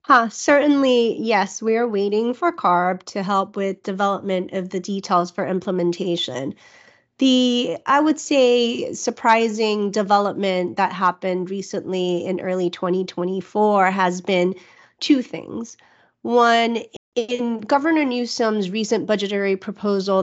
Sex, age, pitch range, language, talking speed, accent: female, 30-49, 180-210 Hz, English, 115 wpm, American